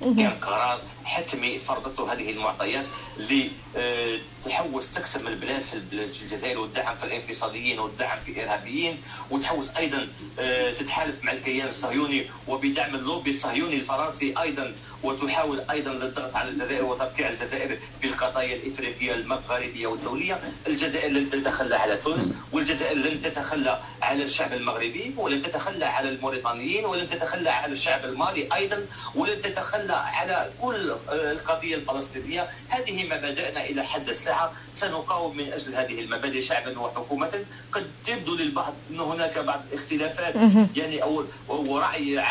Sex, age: male, 40-59